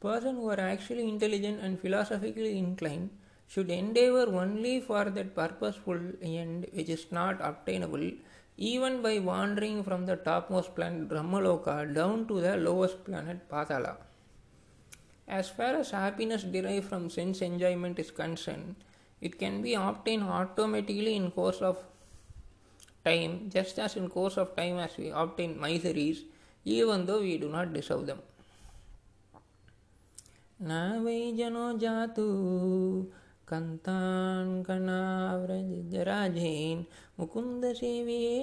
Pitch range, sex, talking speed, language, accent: 175-215 Hz, male, 110 wpm, Tamil, native